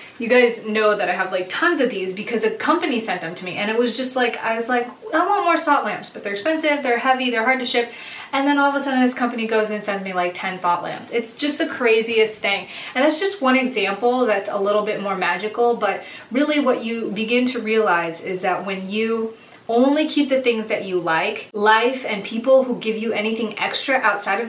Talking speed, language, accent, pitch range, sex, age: 245 wpm, English, American, 205-255 Hz, female, 20-39